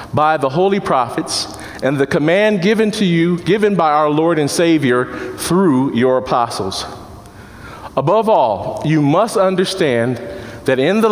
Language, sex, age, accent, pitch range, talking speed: English, male, 40-59, American, 125-195 Hz, 145 wpm